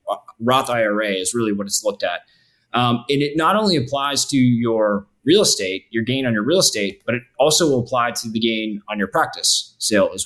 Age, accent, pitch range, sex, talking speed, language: 20-39, American, 110-135 Hz, male, 215 wpm, English